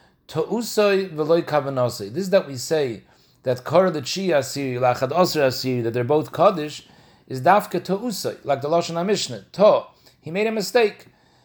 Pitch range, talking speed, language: 135-185 Hz, 160 wpm, English